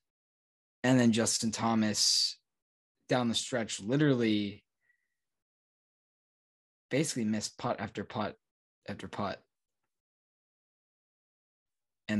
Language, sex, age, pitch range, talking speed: English, male, 20-39, 105-130 Hz, 80 wpm